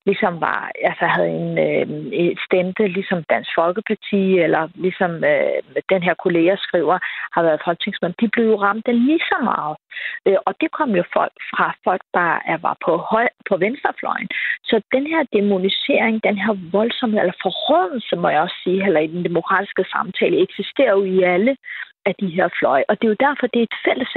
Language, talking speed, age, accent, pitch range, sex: Danish, 195 wpm, 30-49, native, 190-260 Hz, female